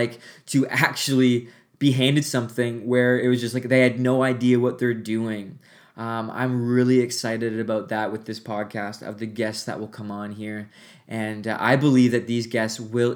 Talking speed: 195 wpm